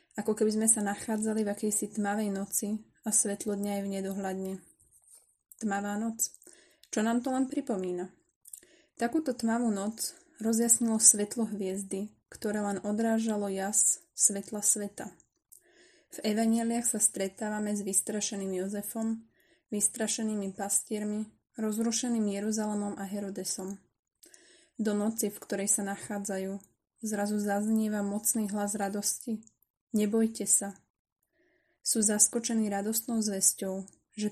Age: 20-39